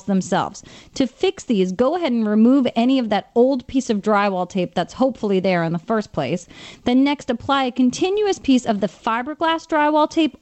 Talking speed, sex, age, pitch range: 195 wpm, female, 30-49, 195-260 Hz